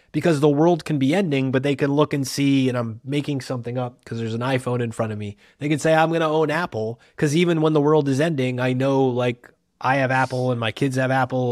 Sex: male